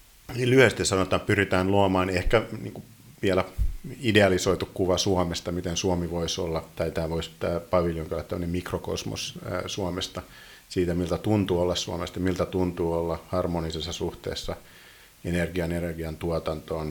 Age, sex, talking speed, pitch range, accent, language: 50-69, male, 130 wpm, 90-100 Hz, native, Finnish